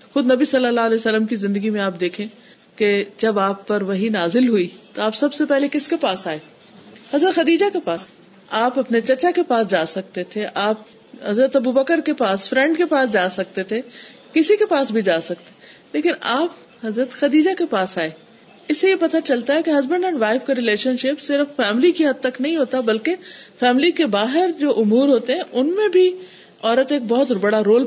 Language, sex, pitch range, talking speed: Urdu, female, 215-295 Hz, 215 wpm